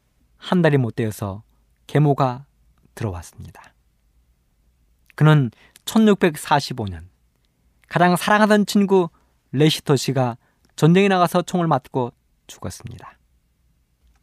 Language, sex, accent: Korean, male, native